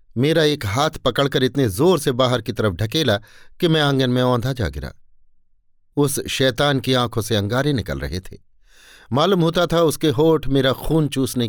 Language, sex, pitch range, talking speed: Hindi, male, 100-155 Hz, 185 wpm